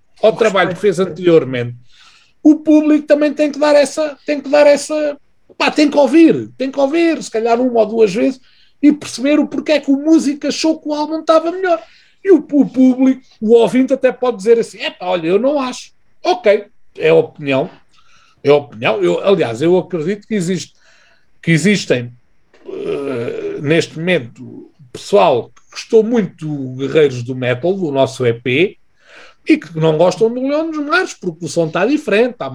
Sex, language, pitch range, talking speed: male, Portuguese, 165-275 Hz, 180 wpm